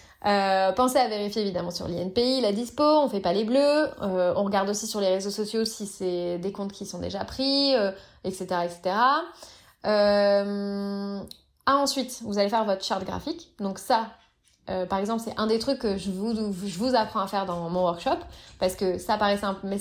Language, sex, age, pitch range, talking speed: French, female, 20-39, 190-245 Hz, 200 wpm